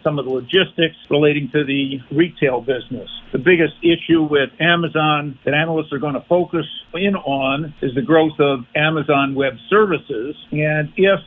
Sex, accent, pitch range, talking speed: male, American, 145-165 Hz, 165 wpm